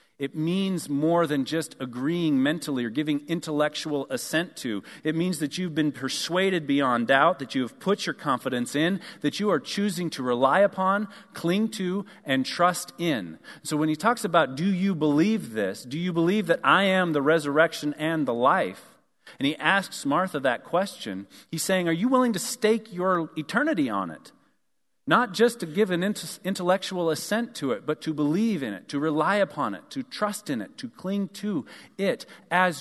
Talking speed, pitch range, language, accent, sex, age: 190 wpm, 150-200 Hz, English, American, male, 40-59